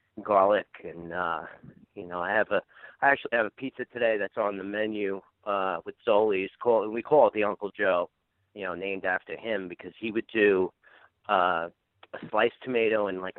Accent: American